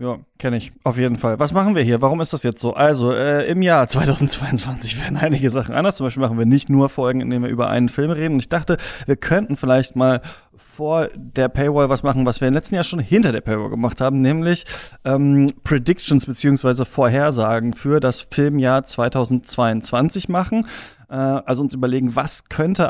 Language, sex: German, male